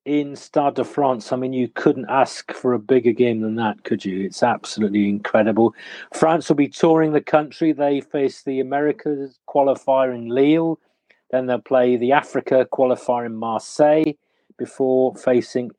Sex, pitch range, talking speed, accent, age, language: male, 120-145 Hz, 165 wpm, British, 40-59, English